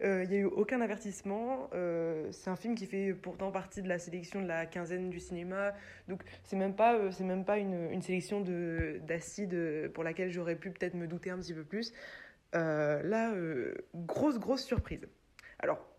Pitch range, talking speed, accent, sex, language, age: 170-210 Hz, 200 wpm, French, female, French, 20-39